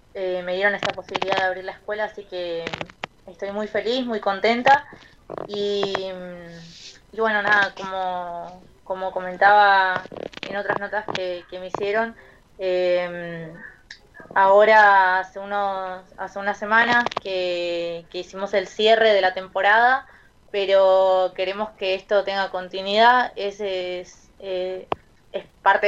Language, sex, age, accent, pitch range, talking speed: Spanish, female, 20-39, Argentinian, 185-205 Hz, 130 wpm